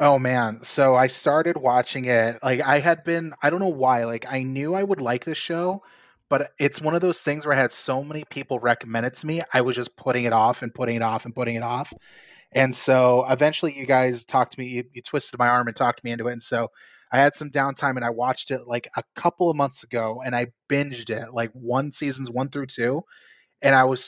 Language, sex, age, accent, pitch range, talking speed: English, male, 20-39, American, 120-140 Hz, 250 wpm